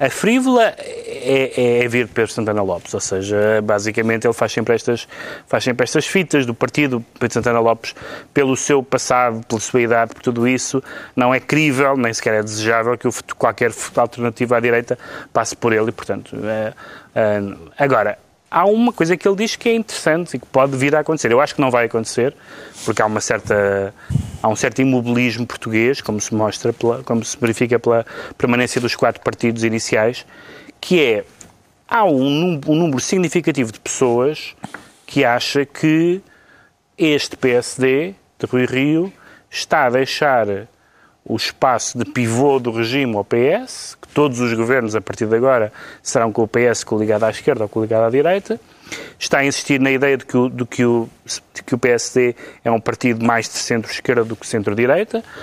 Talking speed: 170 wpm